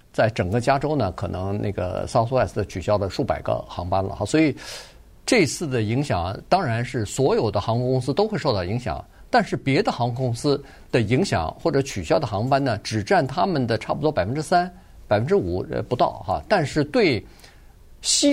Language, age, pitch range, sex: Chinese, 50-69, 110-155 Hz, male